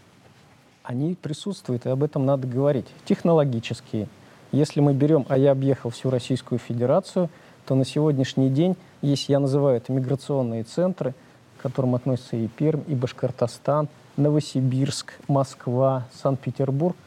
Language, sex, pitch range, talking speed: Russian, male, 125-155 Hz, 130 wpm